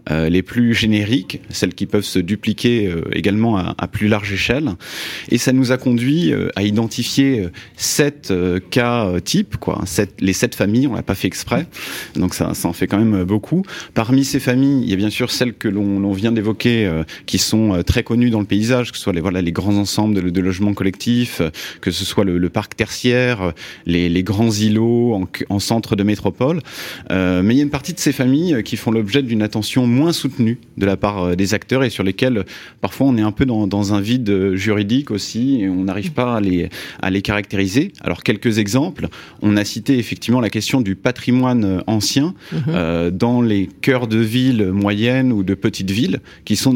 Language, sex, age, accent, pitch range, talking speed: French, male, 30-49, French, 100-125 Hz, 205 wpm